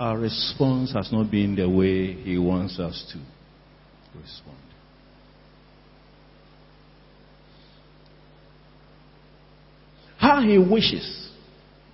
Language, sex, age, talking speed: English, male, 50-69, 75 wpm